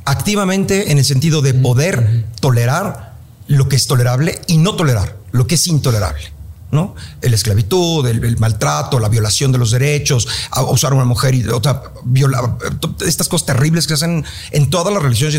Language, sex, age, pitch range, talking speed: Spanish, male, 50-69, 110-145 Hz, 185 wpm